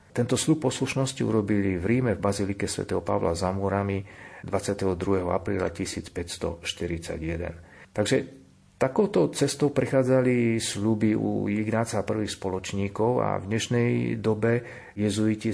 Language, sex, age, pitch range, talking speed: Slovak, male, 50-69, 95-115 Hz, 115 wpm